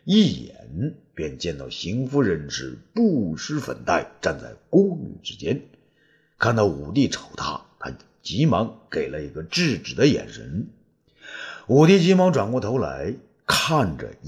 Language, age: Chinese, 50-69